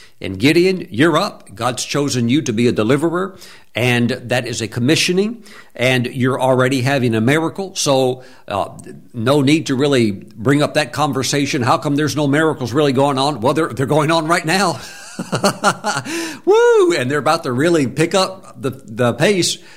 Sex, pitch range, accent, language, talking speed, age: male, 115-155 Hz, American, English, 175 wpm, 60-79